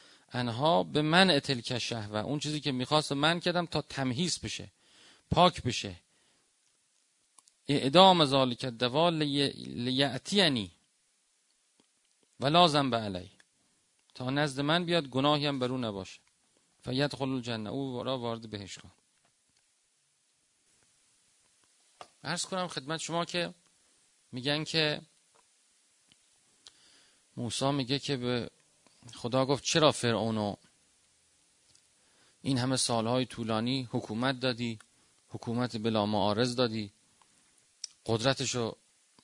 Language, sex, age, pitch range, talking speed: Persian, male, 40-59, 115-150 Hz, 100 wpm